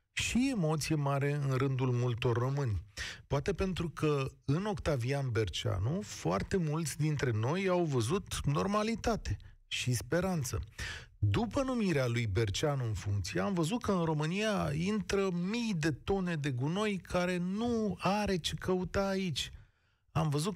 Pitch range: 120-180 Hz